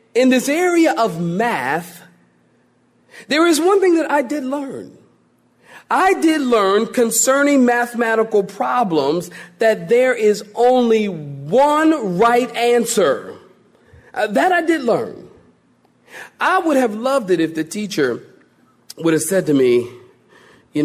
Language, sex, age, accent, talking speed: English, male, 40-59, American, 130 wpm